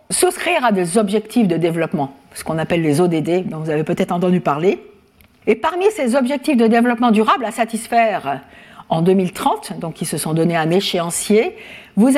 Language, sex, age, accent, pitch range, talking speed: French, female, 50-69, French, 190-260 Hz, 175 wpm